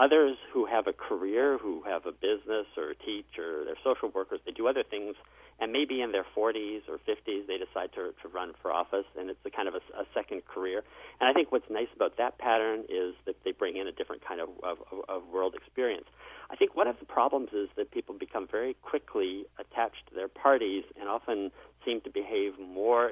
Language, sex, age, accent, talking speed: English, male, 50-69, American, 220 wpm